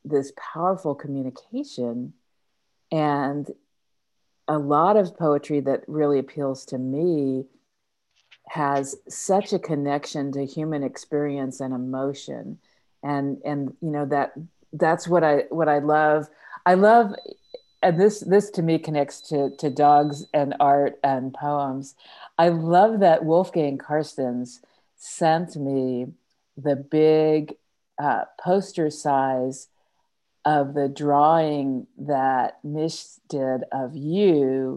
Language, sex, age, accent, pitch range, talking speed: English, female, 50-69, American, 140-160 Hz, 115 wpm